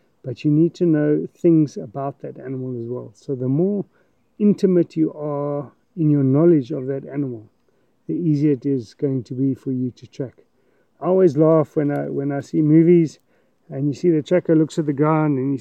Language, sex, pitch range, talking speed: English, male, 135-170 Hz, 210 wpm